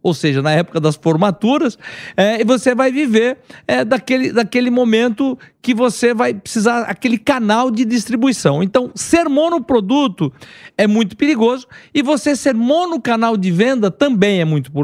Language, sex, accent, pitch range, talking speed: Portuguese, male, Brazilian, 180-250 Hz, 155 wpm